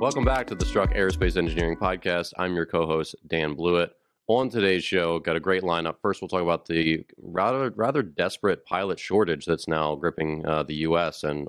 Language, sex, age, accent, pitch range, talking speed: English, male, 30-49, American, 80-90 Hz, 200 wpm